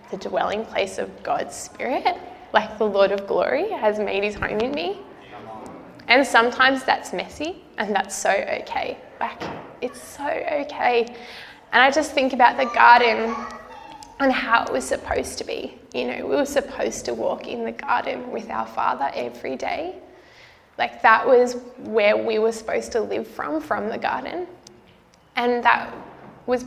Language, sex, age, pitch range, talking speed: English, female, 10-29, 215-265 Hz, 165 wpm